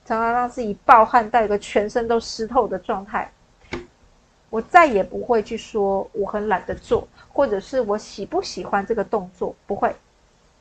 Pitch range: 195-245 Hz